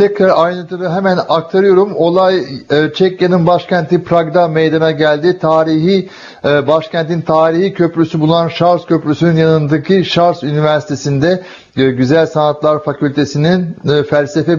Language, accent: Turkish, native